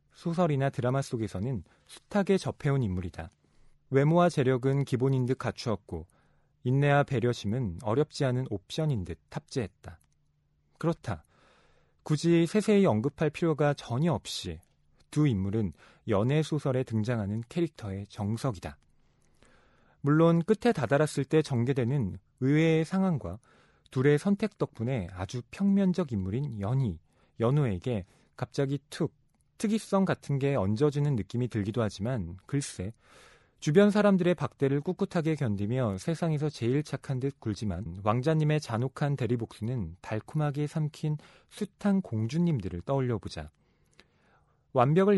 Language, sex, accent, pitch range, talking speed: English, male, Korean, 105-155 Hz, 100 wpm